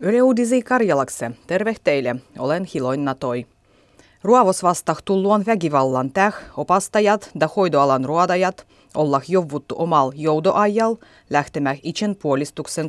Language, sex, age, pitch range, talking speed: Finnish, female, 30-49, 140-195 Hz, 100 wpm